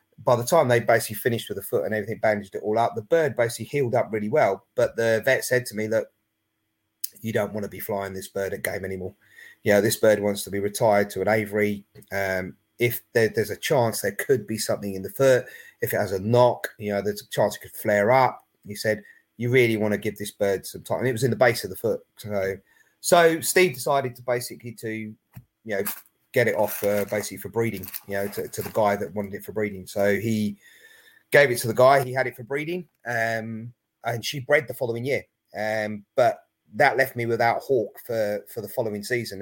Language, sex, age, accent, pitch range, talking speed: English, male, 30-49, British, 105-125 Hz, 235 wpm